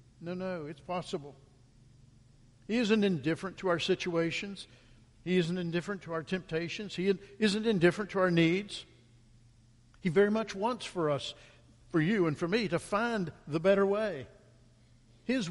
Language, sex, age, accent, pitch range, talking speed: English, male, 60-79, American, 120-185 Hz, 150 wpm